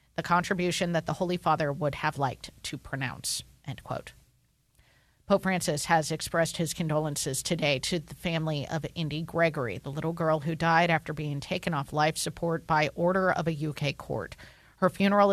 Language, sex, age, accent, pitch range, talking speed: English, female, 40-59, American, 155-185 Hz, 175 wpm